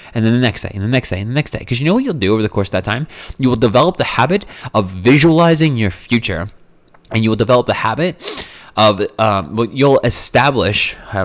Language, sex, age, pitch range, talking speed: English, male, 20-39, 90-125 Hz, 235 wpm